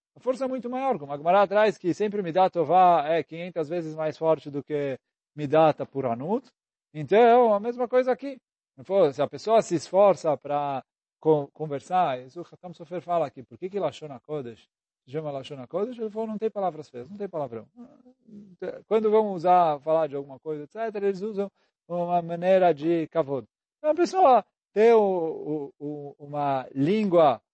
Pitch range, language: 150-215 Hz, Portuguese